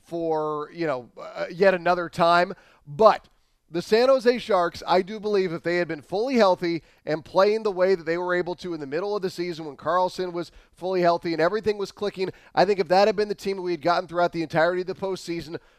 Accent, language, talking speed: American, English, 235 wpm